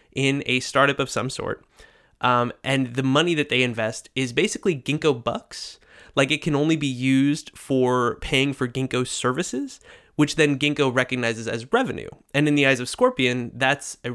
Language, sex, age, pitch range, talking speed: English, male, 20-39, 125-150 Hz, 180 wpm